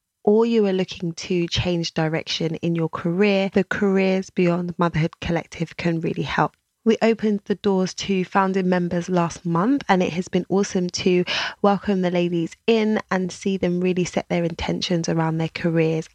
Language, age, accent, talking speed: English, 20-39, British, 175 wpm